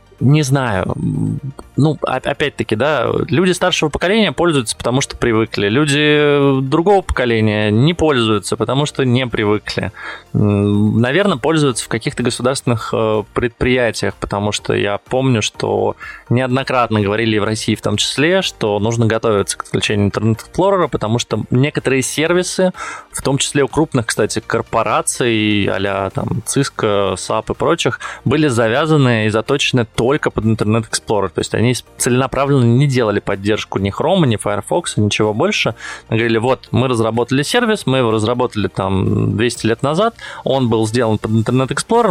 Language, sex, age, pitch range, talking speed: Russian, male, 20-39, 110-140 Hz, 140 wpm